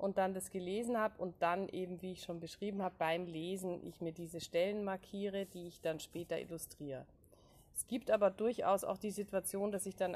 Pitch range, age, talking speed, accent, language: 165-195 Hz, 20-39, 205 wpm, German, German